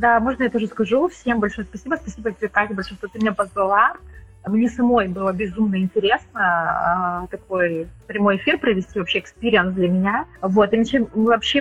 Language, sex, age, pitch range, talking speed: Russian, female, 20-39, 195-225 Hz, 165 wpm